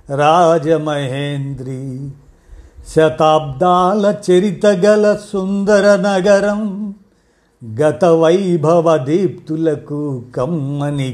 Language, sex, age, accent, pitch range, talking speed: Telugu, male, 50-69, native, 125-160 Hz, 55 wpm